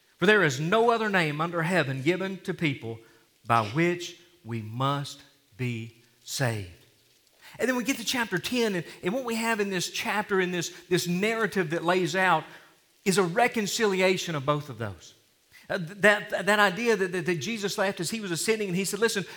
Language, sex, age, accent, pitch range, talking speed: English, male, 40-59, American, 160-210 Hz, 200 wpm